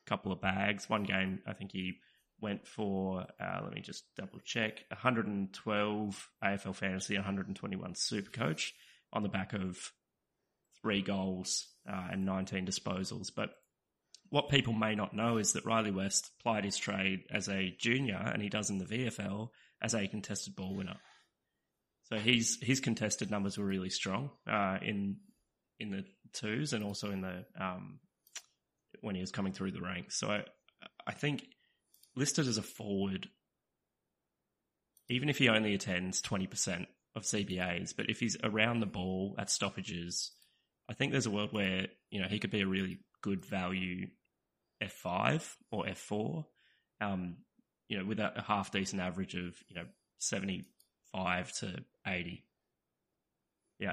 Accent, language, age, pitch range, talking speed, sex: Australian, English, 20-39, 95-110 Hz, 160 wpm, male